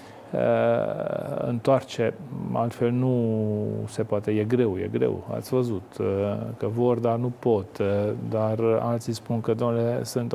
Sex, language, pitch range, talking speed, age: male, Romanian, 110-125 Hz, 130 wpm, 40-59